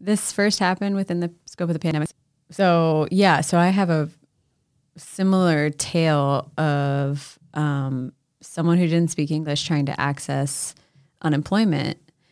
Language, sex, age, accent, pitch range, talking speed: English, female, 30-49, American, 140-165 Hz, 135 wpm